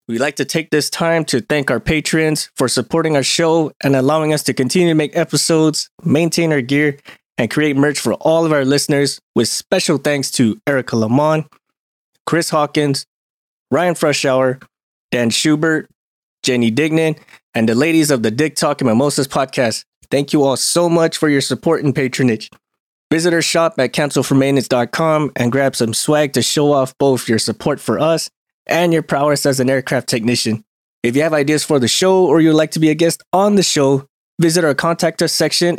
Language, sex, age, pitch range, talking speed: English, male, 20-39, 130-160 Hz, 190 wpm